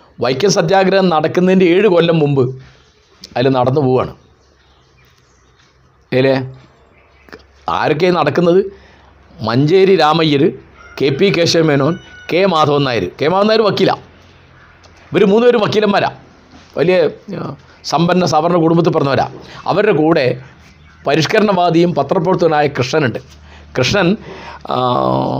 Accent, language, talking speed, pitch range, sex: native, Malayalam, 85 wpm, 130-185 Hz, male